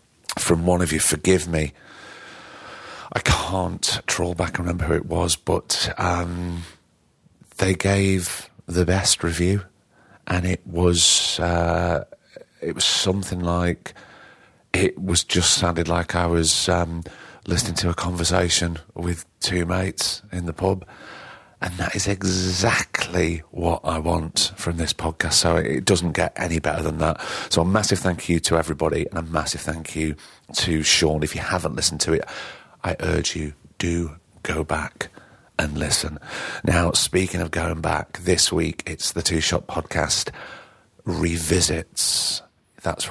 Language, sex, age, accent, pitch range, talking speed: English, male, 40-59, British, 80-90 Hz, 150 wpm